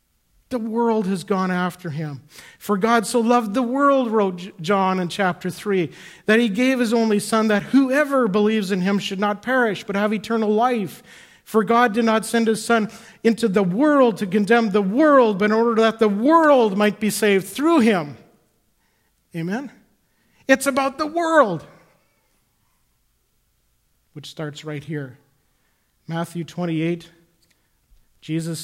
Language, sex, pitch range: English, male, 155-215 Hz